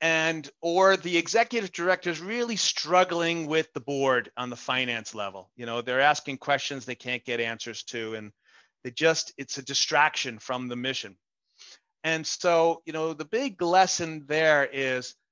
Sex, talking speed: male, 170 wpm